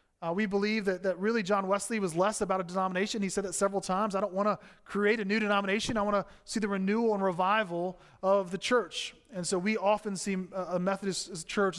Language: English